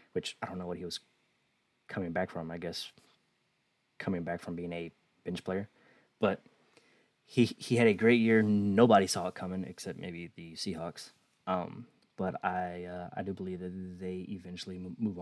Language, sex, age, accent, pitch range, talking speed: English, male, 20-39, American, 90-95 Hz, 180 wpm